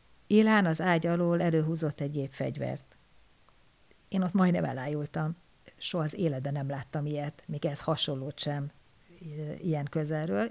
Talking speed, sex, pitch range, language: 130 wpm, female, 155-185 Hz, Hungarian